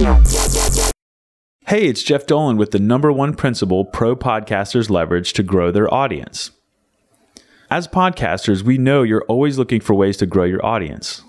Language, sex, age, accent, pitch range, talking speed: English, male, 30-49, American, 95-130 Hz, 155 wpm